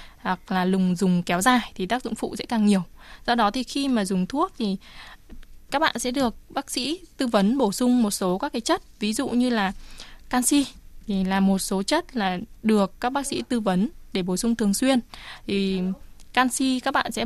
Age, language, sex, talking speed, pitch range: 20-39, Vietnamese, female, 220 wpm, 195-245 Hz